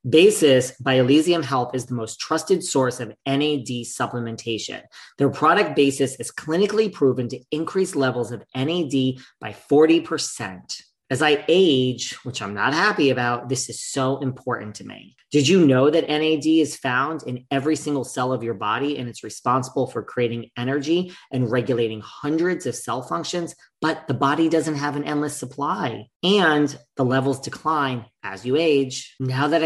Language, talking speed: English, 165 wpm